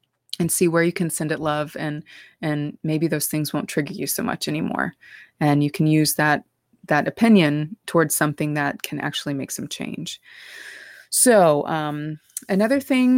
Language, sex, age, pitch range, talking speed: English, female, 20-39, 150-185 Hz, 175 wpm